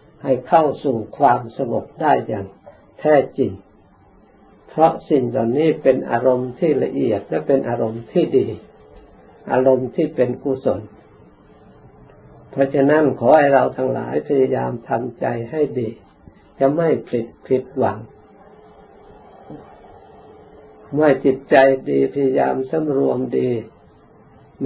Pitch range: 120-140 Hz